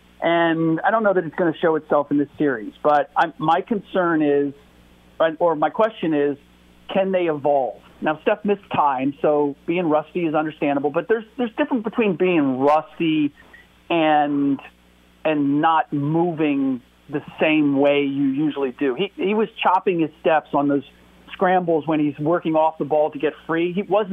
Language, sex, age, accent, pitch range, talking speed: English, male, 40-59, American, 135-195 Hz, 175 wpm